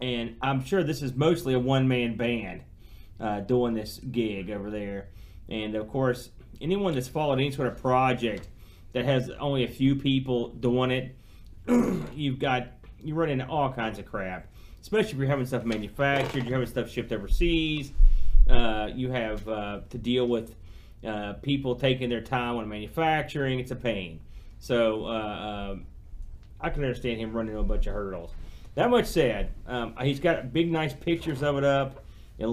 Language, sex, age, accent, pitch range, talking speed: English, male, 30-49, American, 105-135 Hz, 175 wpm